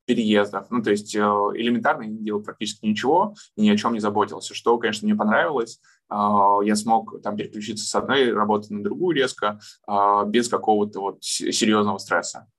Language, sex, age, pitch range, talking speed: Russian, male, 20-39, 105-115 Hz, 160 wpm